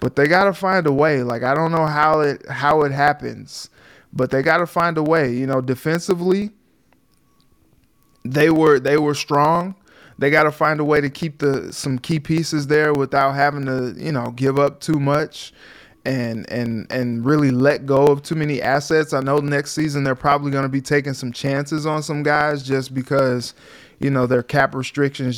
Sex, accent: male, American